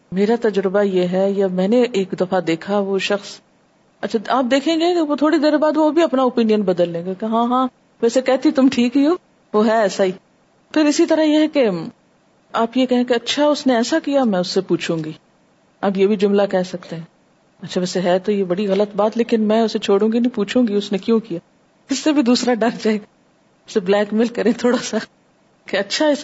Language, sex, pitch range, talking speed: Urdu, female, 200-275 Hz, 240 wpm